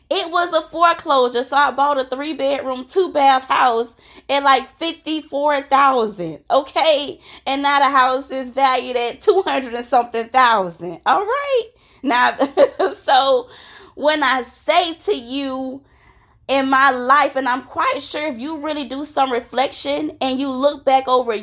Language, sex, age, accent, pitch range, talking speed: English, female, 20-39, American, 255-305 Hz, 155 wpm